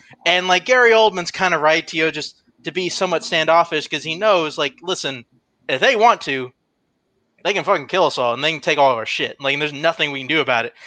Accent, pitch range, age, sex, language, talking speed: American, 145-180 Hz, 20-39, male, English, 250 wpm